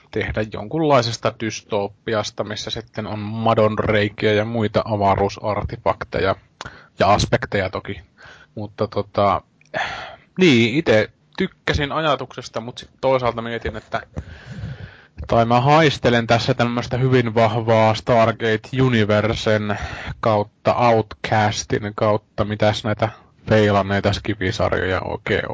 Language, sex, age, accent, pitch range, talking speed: Finnish, male, 20-39, native, 105-120 Hz, 95 wpm